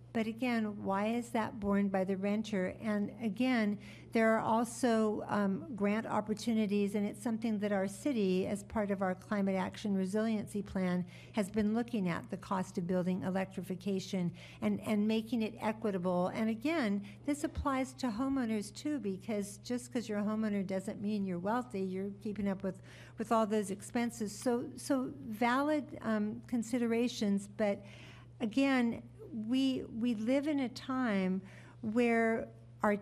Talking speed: 155 wpm